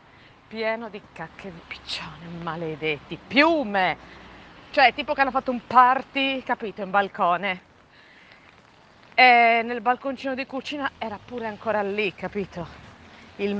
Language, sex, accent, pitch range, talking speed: Italian, female, native, 165-215 Hz, 125 wpm